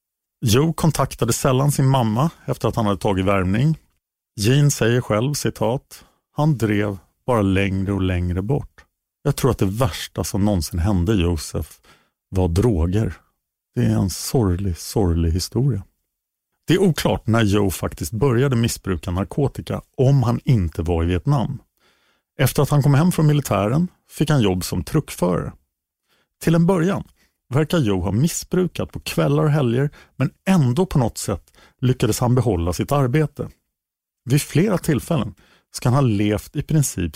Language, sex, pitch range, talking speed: Swedish, male, 100-145 Hz, 155 wpm